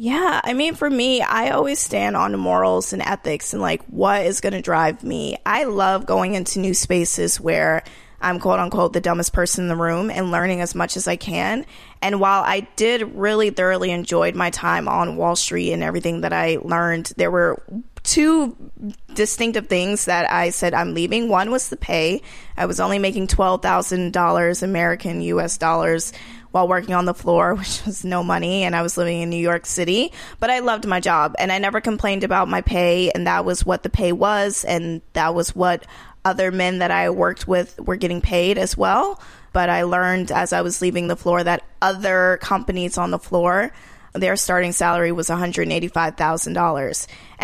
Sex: female